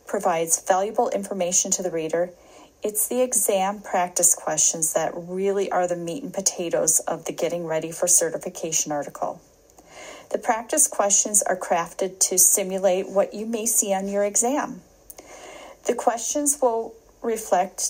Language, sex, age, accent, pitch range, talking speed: English, female, 40-59, American, 180-230 Hz, 145 wpm